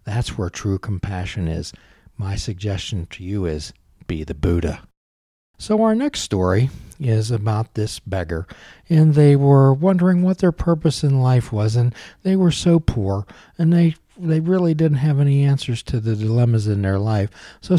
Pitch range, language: 105-160 Hz, English